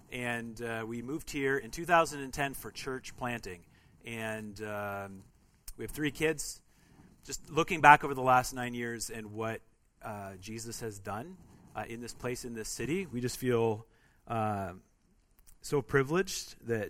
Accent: American